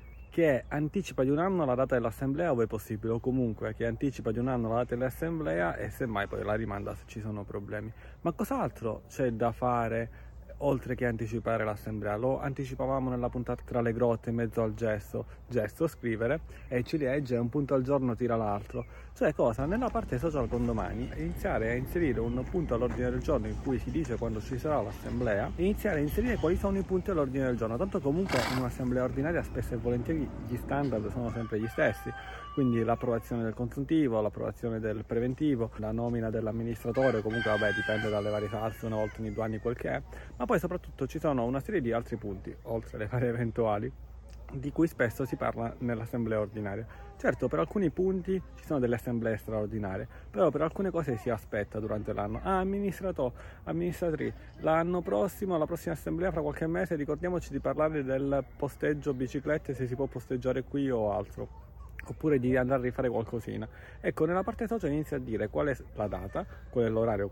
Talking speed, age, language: 190 wpm, 30-49, Italian